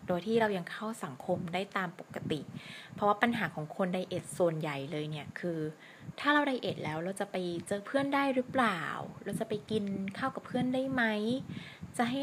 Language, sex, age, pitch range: Thai, female, 20-39, 165-210 Hz